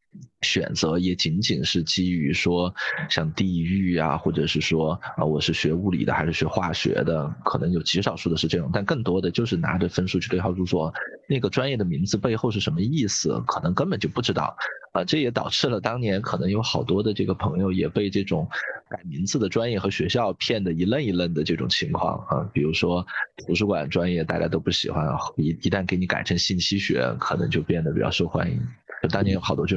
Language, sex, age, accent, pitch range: Chinese, male, 20-39, native, 90-105 Hz